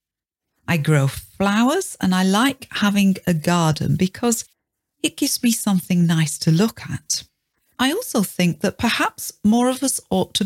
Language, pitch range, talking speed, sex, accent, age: English, 155-220 Hz, 160 wpm, female, British, 40-59